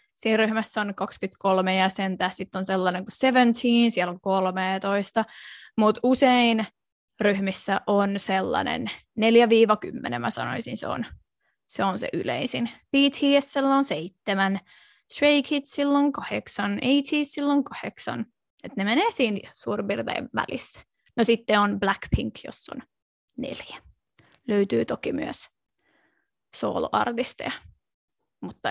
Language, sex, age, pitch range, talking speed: Finnish, female, 20-39, 200-275 Hz, 115 wpm